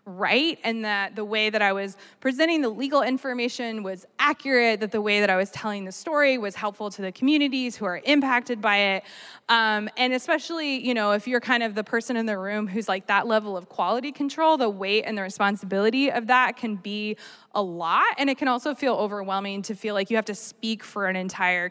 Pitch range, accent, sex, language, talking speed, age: 200-250 Hz, American, female, English, 225 wpm, 20-39